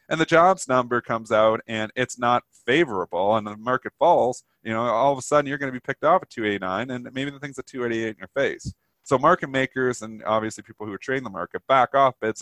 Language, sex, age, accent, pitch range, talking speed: English, male, 30-49, American, 100-130 Hz, 245 wpm